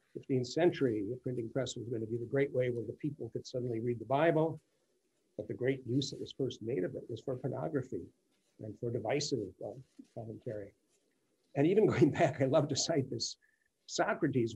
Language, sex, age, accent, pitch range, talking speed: English, male, 50-69, American, 120-150 Hz, 195 wpm